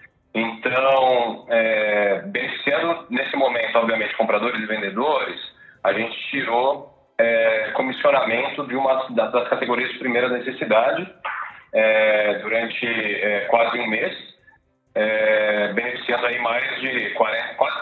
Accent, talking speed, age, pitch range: Brazilian, 95 wpm, 40-59, 110-125 Hz